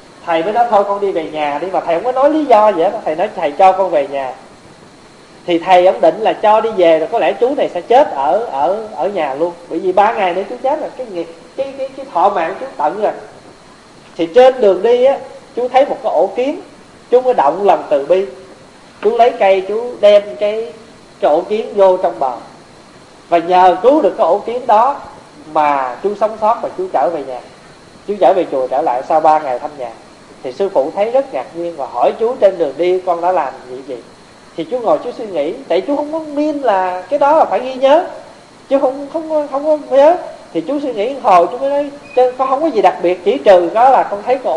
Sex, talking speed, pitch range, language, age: male, 250 wpm, 170-270 Hz, Vietnamese, 20-39